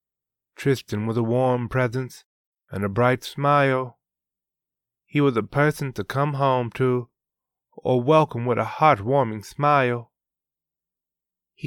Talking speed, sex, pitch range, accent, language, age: 125 wpm, male, 115-140 Hz, American, English, 20-39